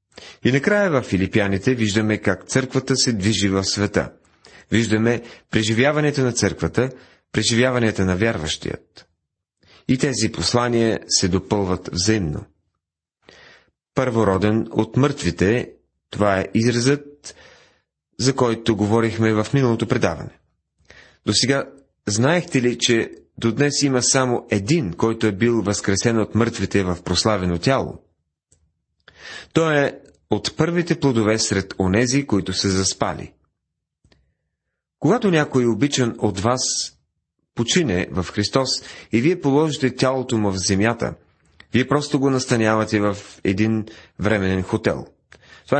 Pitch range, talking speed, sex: 105-130 Hz, 115 wpm, male